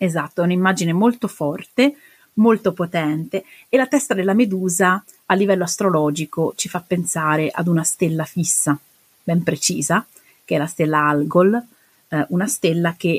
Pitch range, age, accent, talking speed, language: 155-190 Hz, 30-49, native, 150 wpm, Italian